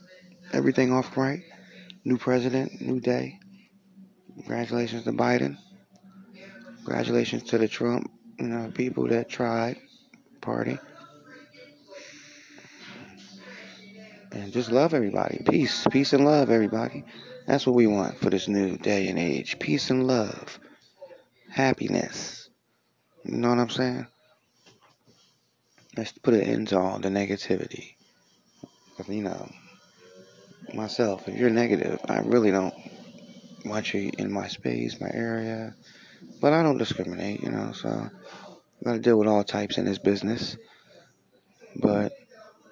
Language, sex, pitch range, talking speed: English, male, 105-145 Hz, 125 wpm